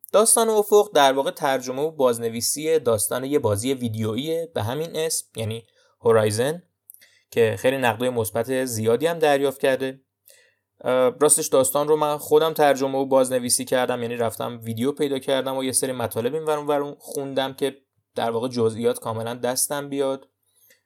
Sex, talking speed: male, 150 wpm